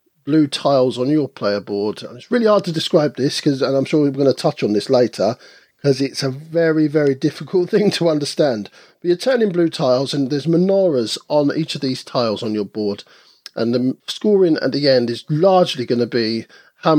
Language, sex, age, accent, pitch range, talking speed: English, male, 50-69, British, 115-160 Hz, 210 wpm